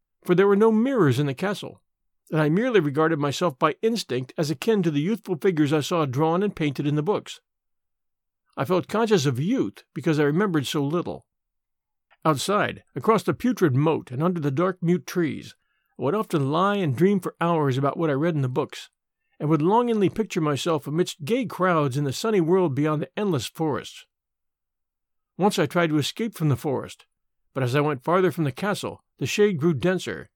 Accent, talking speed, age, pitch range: American, 200 wpm, 50-69, 140-190 Hz